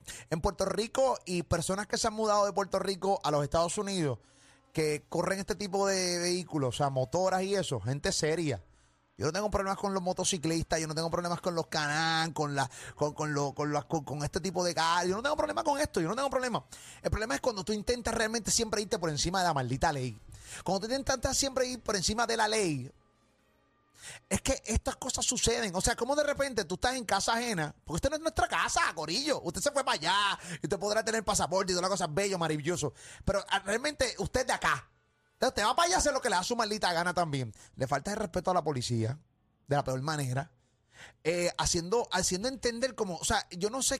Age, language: 30-49, English